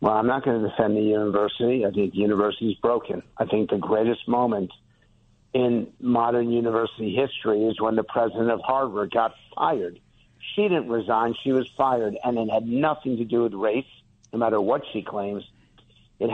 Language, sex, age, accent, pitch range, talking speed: English, male, 60-79, American, 110-130 Hz, 185 wpm